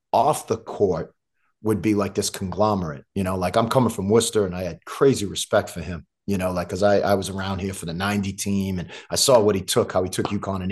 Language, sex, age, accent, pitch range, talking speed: English, male, 30-49, American, 95-105 Hz, 260 wpm